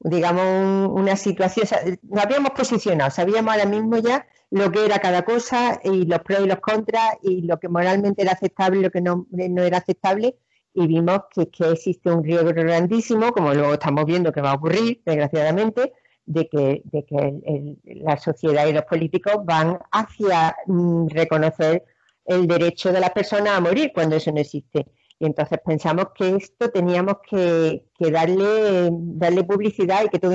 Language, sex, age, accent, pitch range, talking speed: Spanish, female, 50-69, Spanish, 160-200 Hz, 185 wpm